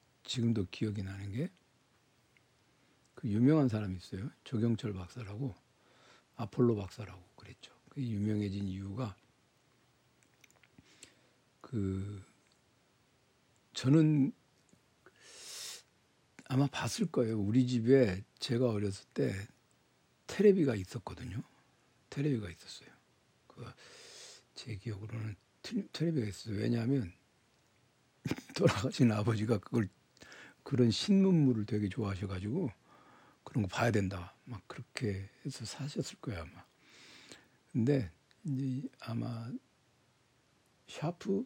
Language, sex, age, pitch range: Korean, male, 60-79, 105-135 Hz